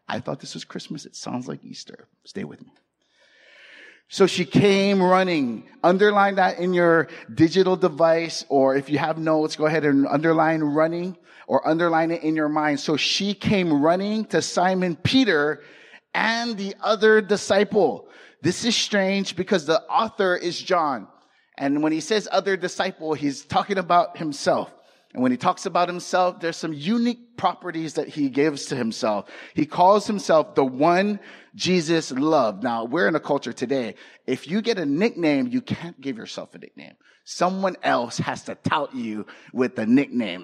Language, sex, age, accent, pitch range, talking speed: English, male, 30-49, American, 155-205 Hz, 170 wpm